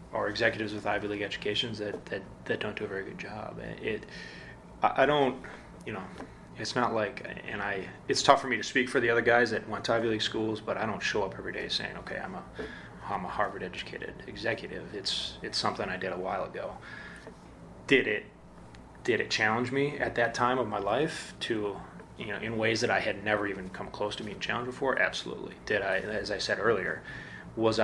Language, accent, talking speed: English, American, 220 wpm